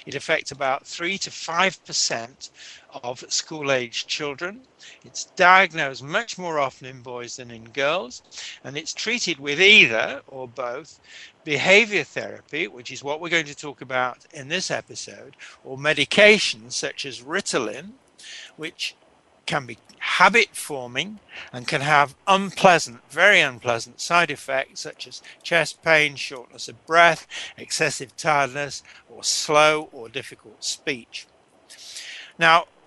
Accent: British